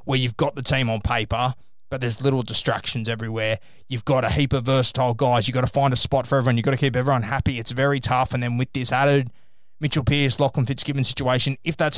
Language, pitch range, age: English, 125-140 Hz, 20-39